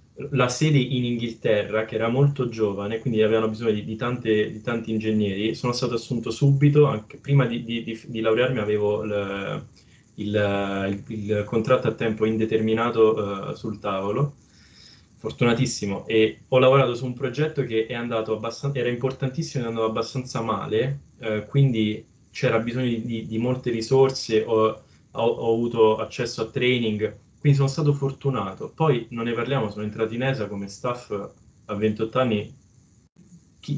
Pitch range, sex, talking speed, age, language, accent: 110-135 Hz, male, 160 wpm, 20-39, Italian, native